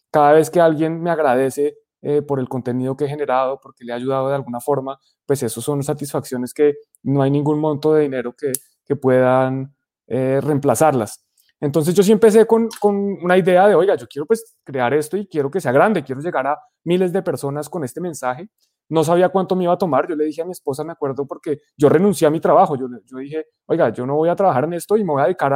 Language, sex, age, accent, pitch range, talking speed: Spanish, male, 20-39, Colombian, 135-185 Hz, 240 wpm